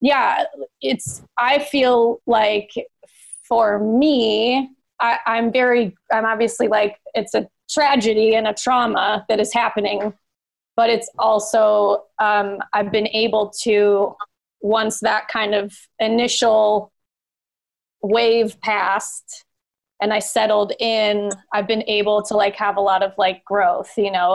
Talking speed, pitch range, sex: 130 wpm, 205-235 Hz, female